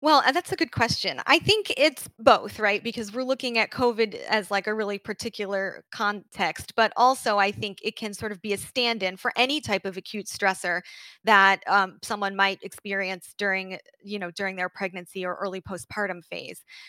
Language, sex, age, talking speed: English, female, 20-39, 190 wpm